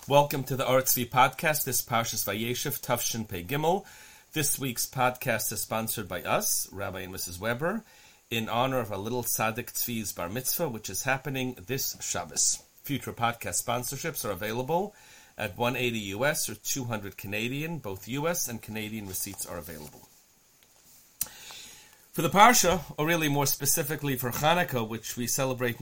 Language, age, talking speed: English, 40-59, 155 wpm